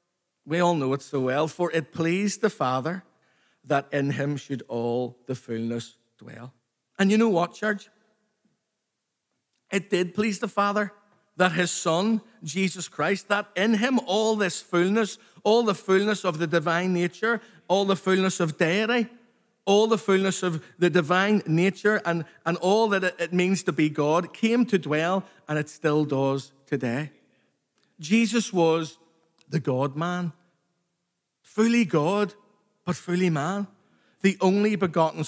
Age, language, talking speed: 50-69, English, 150 wpm